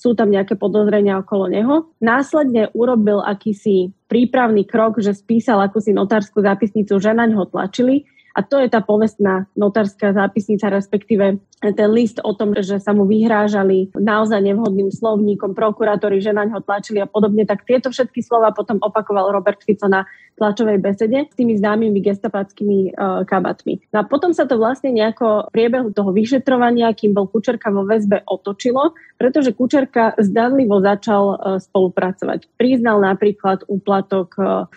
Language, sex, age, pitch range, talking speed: Slovak, female, 20-39, 200-235 Hz, 150 wpm